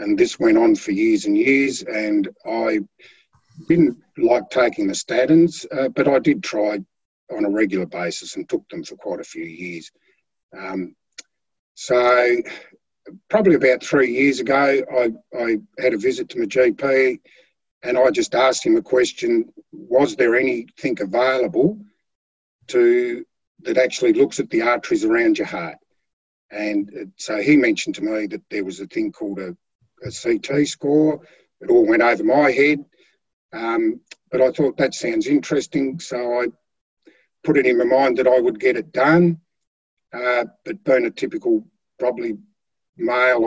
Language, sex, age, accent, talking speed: English, male, 50-69, Australian, 160 wpm